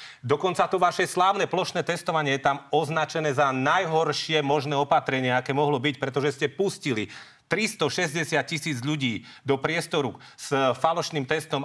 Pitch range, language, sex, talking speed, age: 125-155 Hz, Slovak, male, 140 wpm, 40-59